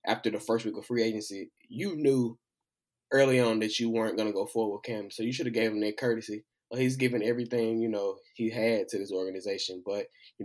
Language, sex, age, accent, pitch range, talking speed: English, male, 20-39, American, 105-115 Hz, 230 wpm